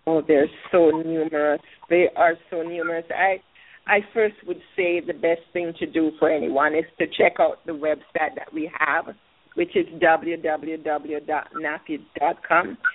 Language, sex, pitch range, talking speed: English, female, 165-220 Hz, 150 wpm